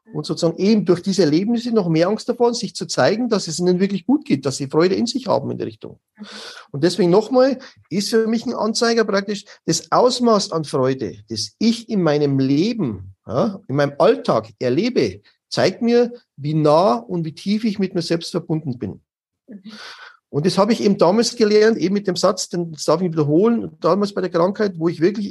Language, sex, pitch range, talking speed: German, male, 165-210 Hz, 200 wpm